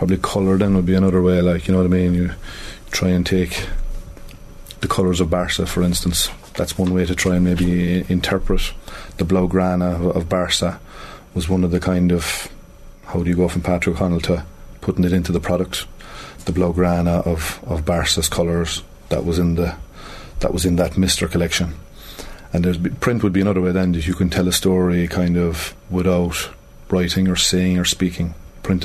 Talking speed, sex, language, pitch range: 195 wpm, male, English, 85-95 Hz